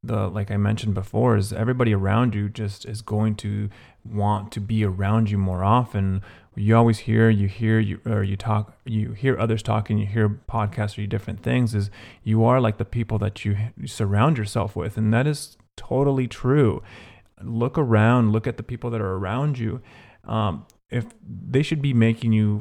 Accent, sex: American, male